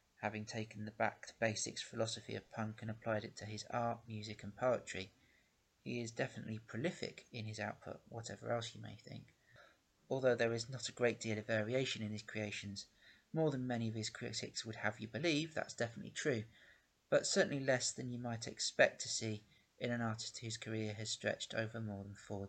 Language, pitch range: English, 105-120 Hz